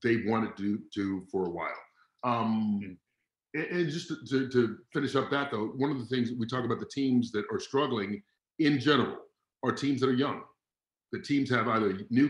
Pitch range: 115-140 Hz